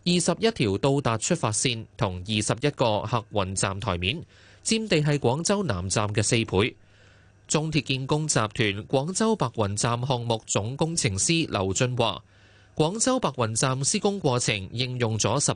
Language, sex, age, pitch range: Chinese, male, 20-39, 105-150 Hz